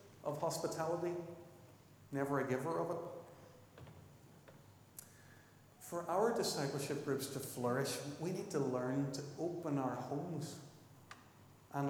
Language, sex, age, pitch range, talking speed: English, male, 40-59, 130-150 Hz, 110 wpm